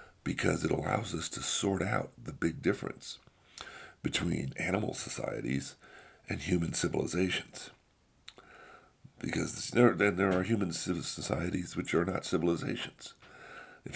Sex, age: male, 50-69